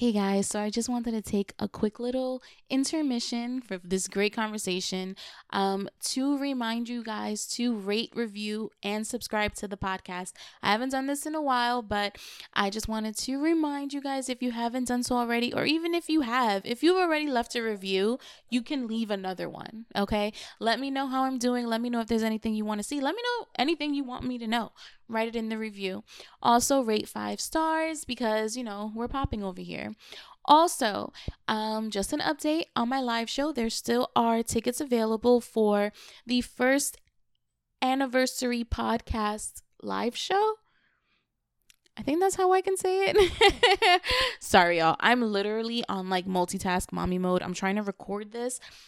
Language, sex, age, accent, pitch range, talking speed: English, female, 20-39, American, 200-260 Hz, 185 wpm